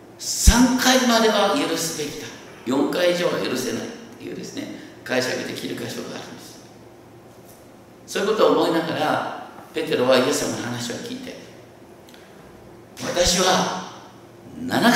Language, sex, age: Japanese, male, 50-69